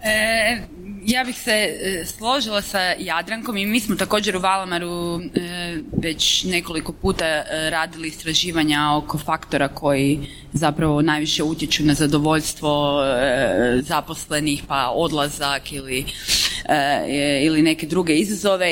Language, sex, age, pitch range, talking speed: Croatian, female, 20-39, 150-180 Hz, 120 wpm